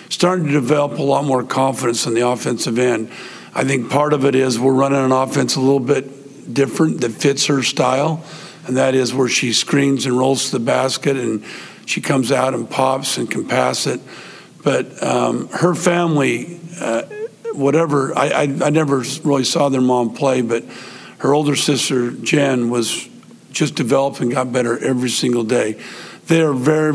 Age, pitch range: 50-69, 125-155 Hz